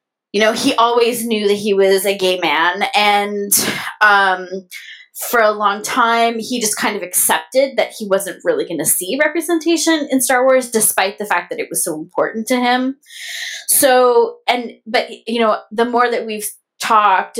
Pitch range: 190-245 Hz